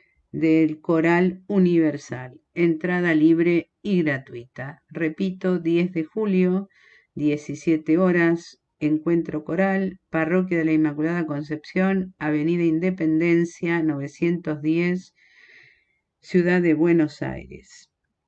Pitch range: 155-180 Hz